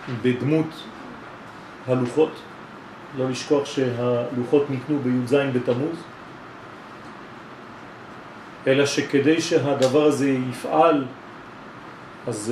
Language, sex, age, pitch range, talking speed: French, male, 40-59, 125-150 Hz, 65 wpm